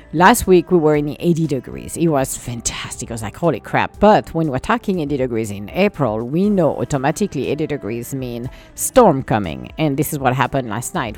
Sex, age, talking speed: female, 50-69, 205 wpm